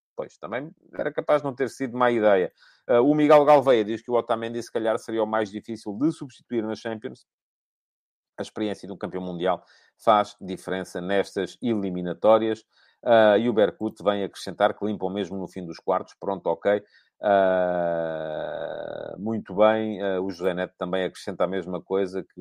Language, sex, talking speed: English, male, 175 wpm